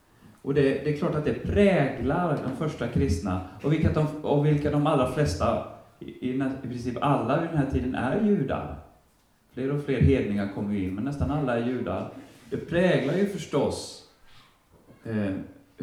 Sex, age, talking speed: male, 30-49, 170 wpm